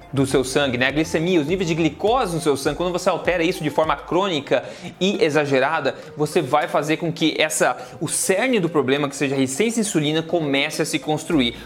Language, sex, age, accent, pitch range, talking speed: Portuguese, male, 20-39, Brazilian, 145-195 Hz, 215 wpm